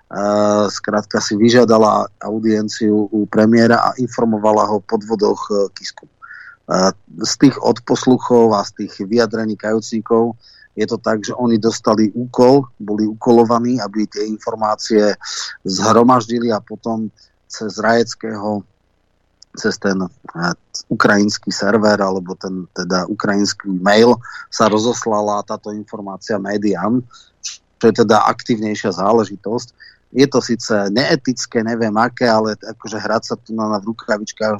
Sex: male